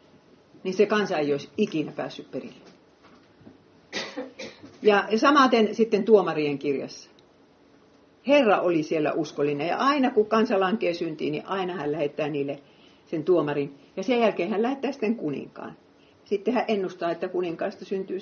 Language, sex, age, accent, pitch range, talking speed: Finnish, female, 50-69, native, 155-215 Hz, 140 wpm